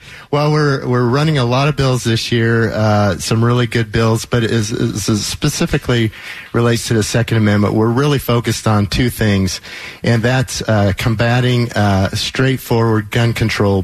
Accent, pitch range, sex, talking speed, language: American, 100-120 Hz, male, 165 wpm, English